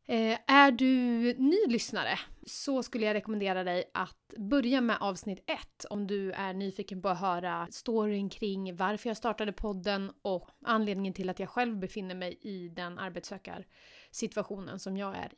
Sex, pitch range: female, 195-245 Hz